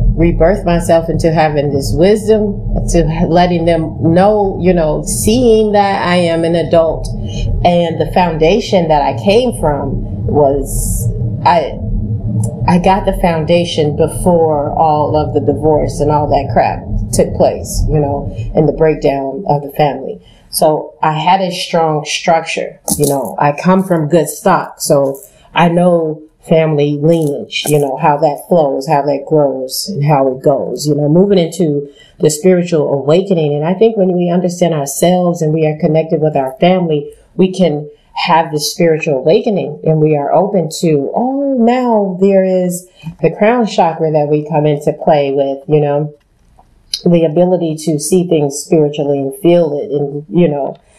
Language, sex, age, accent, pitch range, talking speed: English, female, 30-49, American, 145-175 Hz, 165 wpm